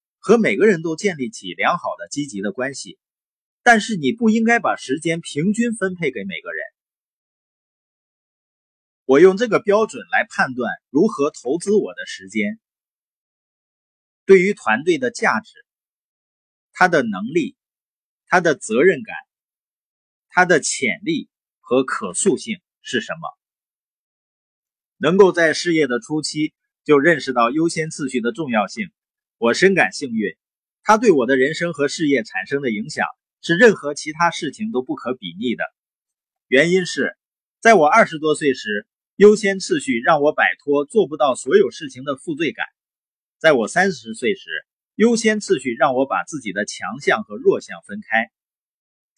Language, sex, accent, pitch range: Chinese, male, native, 145-235 Hz